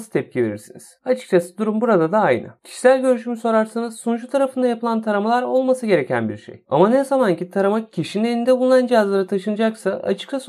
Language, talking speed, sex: Turkish, 165 wpm, male